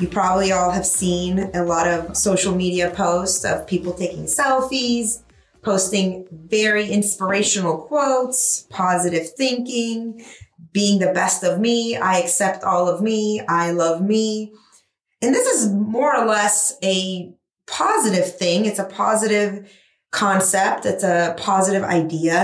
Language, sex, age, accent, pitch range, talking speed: English, female, 20-39, American, 170-205 Hz, 135 wpm